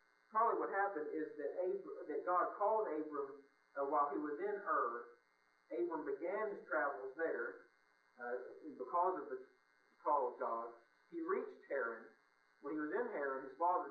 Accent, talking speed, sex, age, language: American, 165 wpm, male, 50-69, English